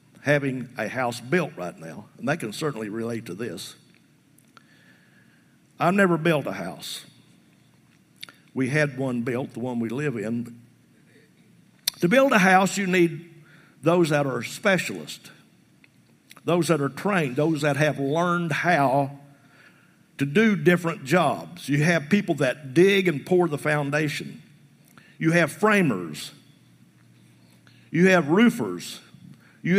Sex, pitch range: male, 140-185 Hz